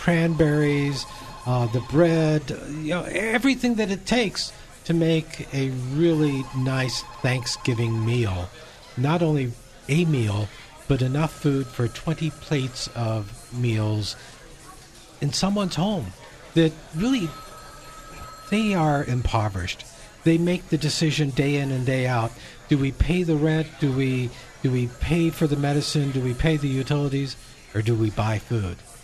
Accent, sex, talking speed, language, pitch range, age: American, male, 145 wpm, English, 125-155 Hz, 50-69